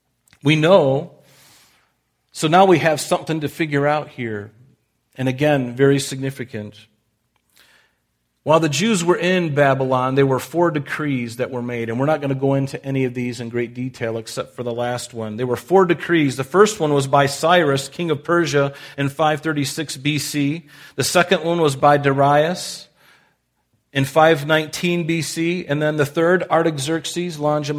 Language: English